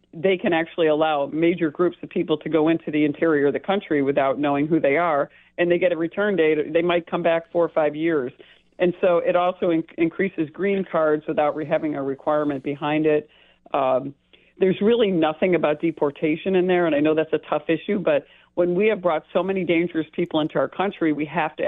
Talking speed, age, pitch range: 215 wpm, 50-69, 150-175 Hz